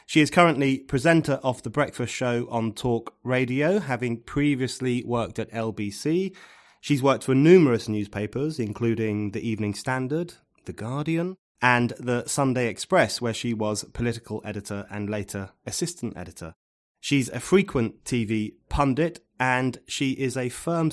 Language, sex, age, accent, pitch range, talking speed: English, male, 30-49, British, 105-135 Hz, 145 wpm